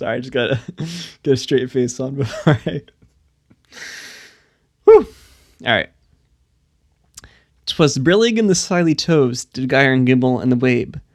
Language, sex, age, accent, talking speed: English, male, 20-39, American, 145 wpm